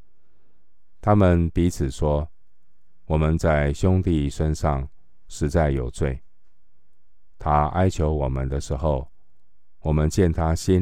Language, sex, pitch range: Chinese, male, 70-90 Hz